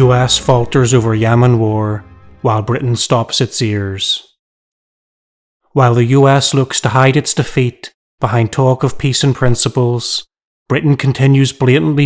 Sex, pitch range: male, 115-130 Hz